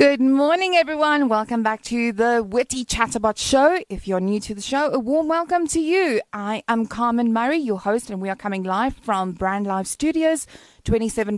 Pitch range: 195-260 Hz